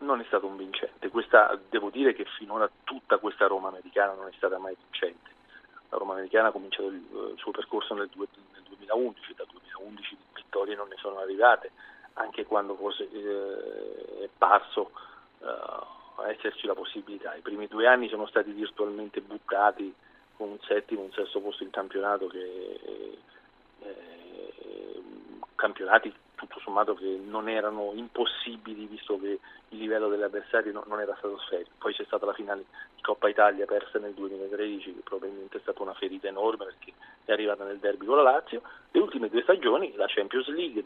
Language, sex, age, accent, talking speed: Italian, male, 40-59, native, 170 wpm